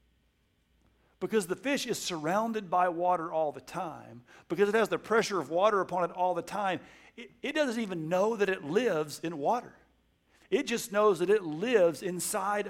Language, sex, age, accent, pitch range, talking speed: English, male, 50-69, American, 155-205 Hz, 185 wpm